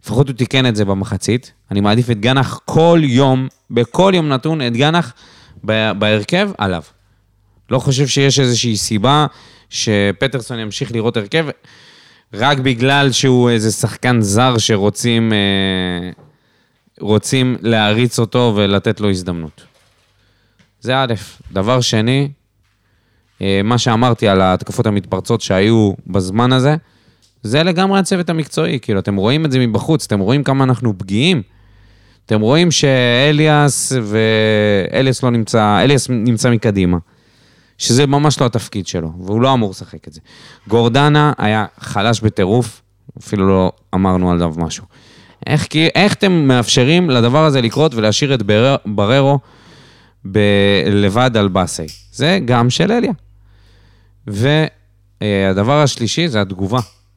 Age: 20-39